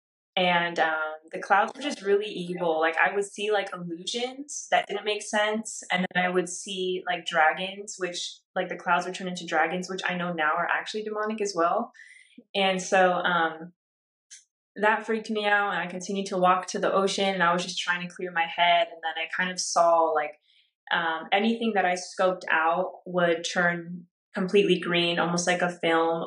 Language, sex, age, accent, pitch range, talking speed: English, female, 20-39, American, 170-195 Hz, 200 wpm